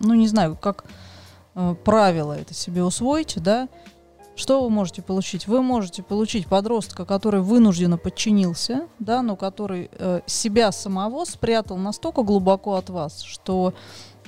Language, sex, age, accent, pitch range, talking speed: Russian, female, 20-39, native, 185-230 Hz, 140 wpm